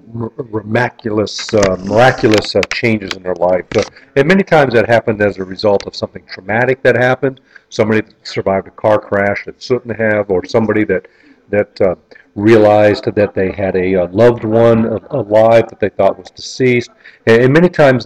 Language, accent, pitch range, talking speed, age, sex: English, American, 105-130 Hz, 175 wpm, 50-69, male